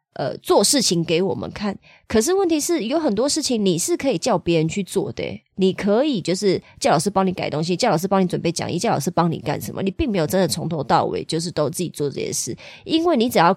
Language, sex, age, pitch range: Chinese, female, 20-39, 175-235 Hz